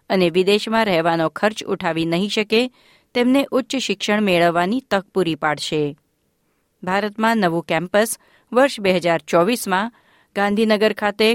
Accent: native